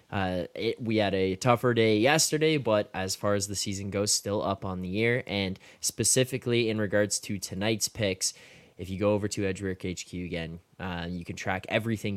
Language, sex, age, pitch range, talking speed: English, male, 20-39, 95-110 Hz, 190 wpm